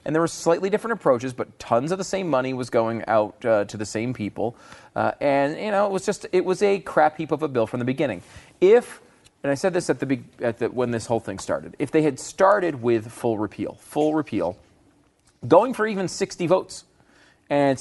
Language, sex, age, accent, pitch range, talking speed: English, male, 30-49, American, 115-160 Hz, 220 wpm